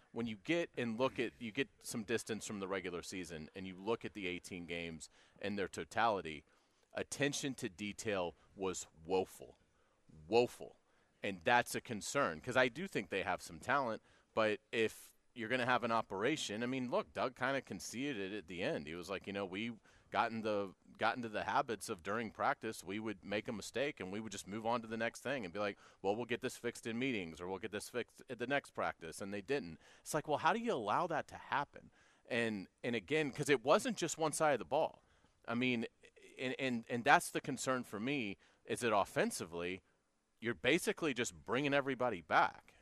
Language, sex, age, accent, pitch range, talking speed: English, male, 30-49, American, 95-130 Hz, 220 wpm